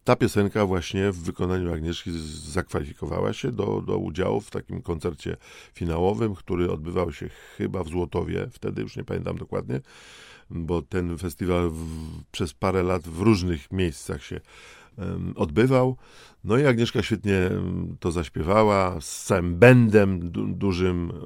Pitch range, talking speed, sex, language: 90-110 Hz, 140 wpm, male, Polish